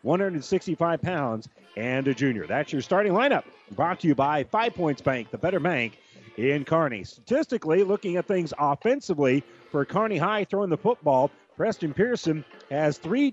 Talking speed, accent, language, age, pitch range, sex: 160 wpm, American, English, 40-59, 135-180 Hz, male